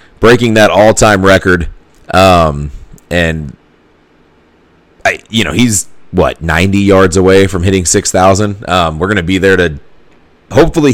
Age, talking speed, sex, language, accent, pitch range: 30-49, 145 wpm, male, English, American, 85-105 Hz